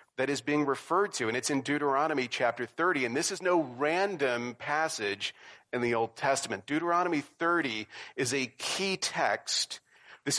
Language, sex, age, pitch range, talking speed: English, male, 40-59, 135-175 Hz, 160 wpm